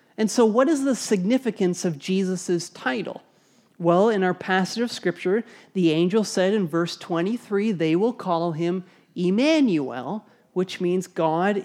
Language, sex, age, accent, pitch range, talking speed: English, male, 30-49, American, 170-210 Hz, 150 wpm